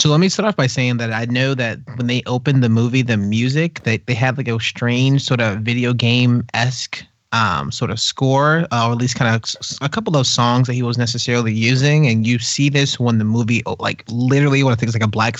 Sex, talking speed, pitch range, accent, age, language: male, 245 wpm, 115-135 Hz, American, 30-49, English